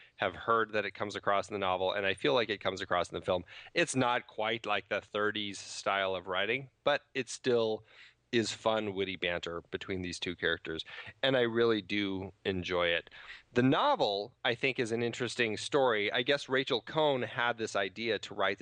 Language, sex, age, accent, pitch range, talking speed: English, male, 30-49, American, 100-120 Hz, 200 wpm